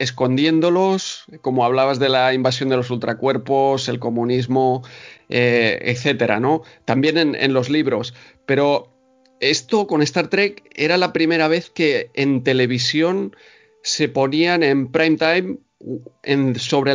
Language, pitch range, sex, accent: Spanish, 125-150 Hz, male, Spanish